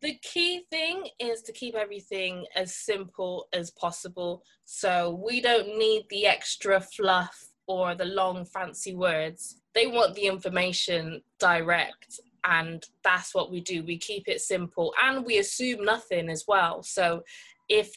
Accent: British